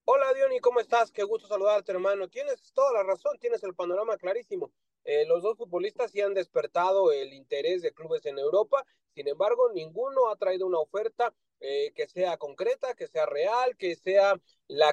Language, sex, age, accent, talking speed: Spanish, male, 30-49, Mexican, 185 wpm